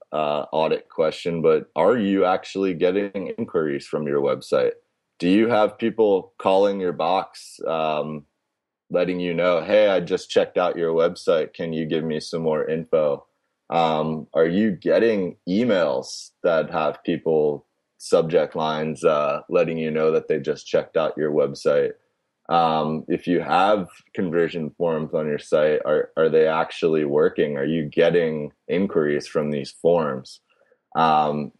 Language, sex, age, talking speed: English, male, 20-39, 150 wpm